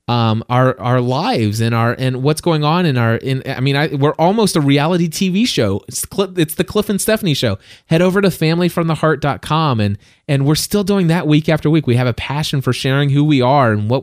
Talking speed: 230 wpm